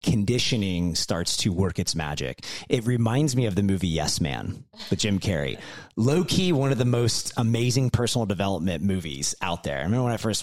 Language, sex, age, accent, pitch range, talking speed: English, male, 30-49, American, 95-125 Hz, 190 wpm